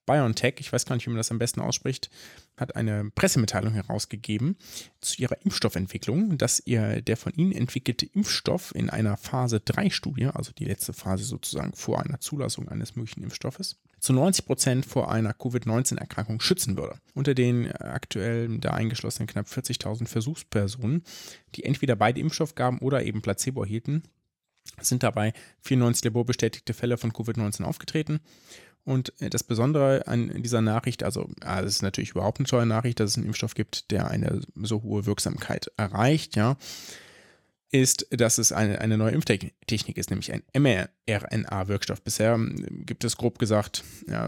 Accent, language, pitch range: German, German, 110-135 Hz